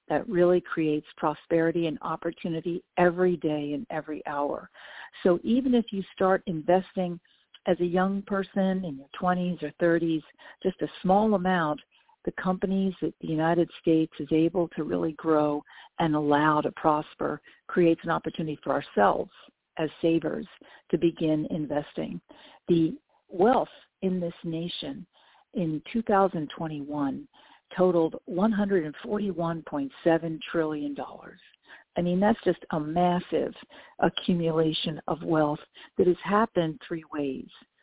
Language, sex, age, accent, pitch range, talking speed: English, female, 50-69, American, 160-190 Hz, 125 wpm